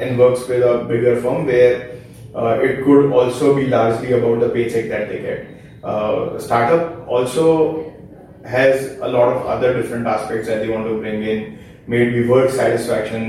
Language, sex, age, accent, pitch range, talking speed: Hindi, male, 20-39, native, 115-135 Hz, 175 wpm